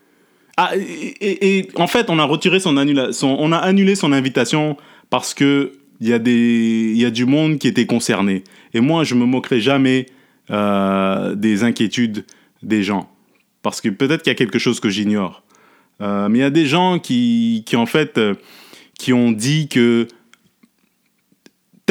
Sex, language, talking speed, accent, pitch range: male, French, 185 wpm, French, 115-160 Hz